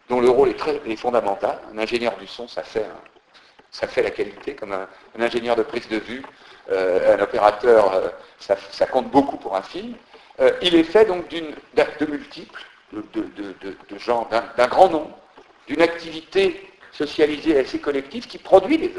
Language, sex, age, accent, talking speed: French, male, 60-79, French, 200 wpm